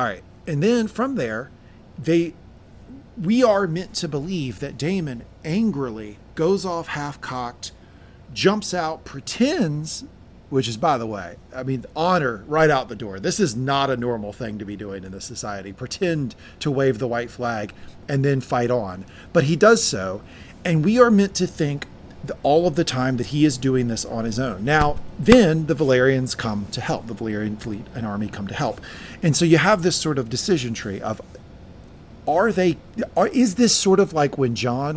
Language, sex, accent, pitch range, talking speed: English, male, American, 115-160 Hz, 195 wpm